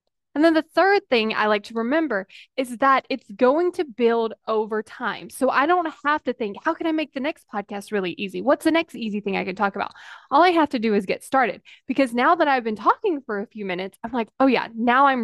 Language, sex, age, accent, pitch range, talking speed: English, female, 10-29, American, 215-275 Hz, 255 wpm